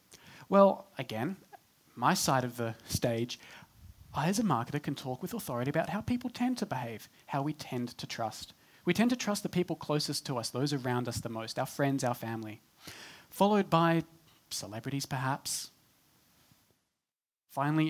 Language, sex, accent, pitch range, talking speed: English, male, Australian, 125-175 Hz, 165 wpm